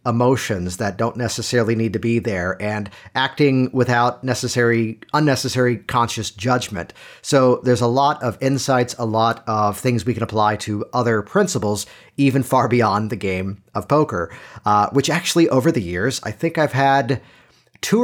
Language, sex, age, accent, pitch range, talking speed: English, male, 40-59, American, 110-140 Hz, 165 wpm